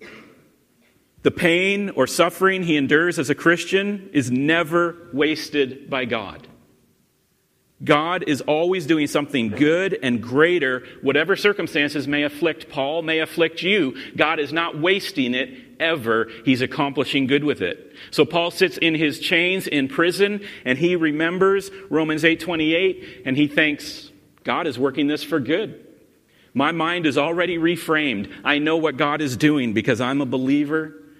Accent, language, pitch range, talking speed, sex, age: American, English, 140-165 Hz, 150 wpm, male, 40-59